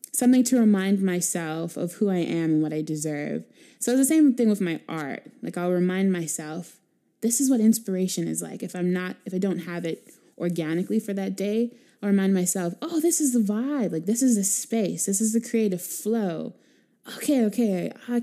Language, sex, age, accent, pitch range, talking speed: English, female, 20-39, American, 180-240 Hz, 205 wpm